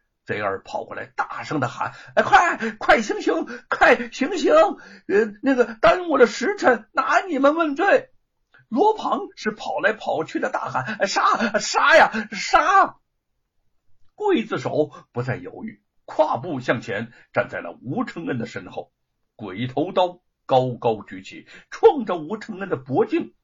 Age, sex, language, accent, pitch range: 60-79, male, Chinese, native, 210-340 Hz